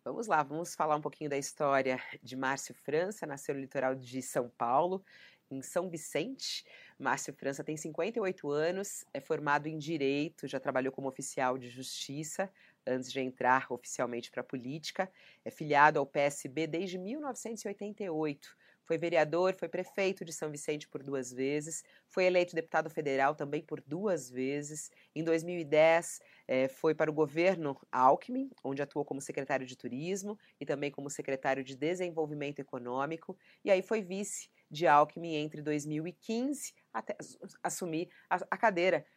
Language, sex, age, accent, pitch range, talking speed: Portuguese, female, 30-49, Brazilian, 135-175 Hz, 150 wpm